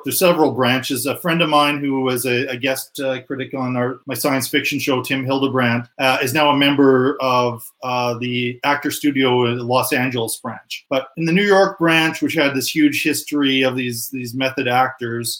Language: English